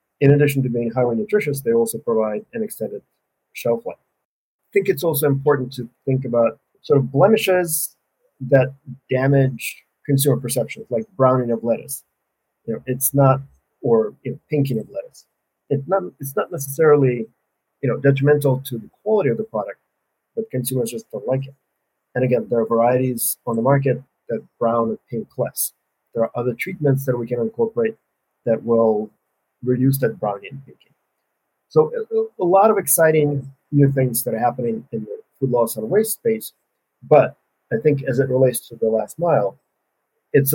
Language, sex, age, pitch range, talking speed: English, male, 40-59, 120-150 Hz, 175 wpm